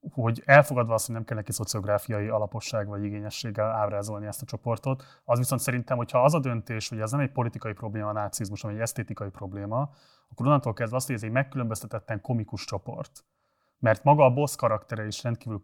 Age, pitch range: 30-49, 110-125 Hz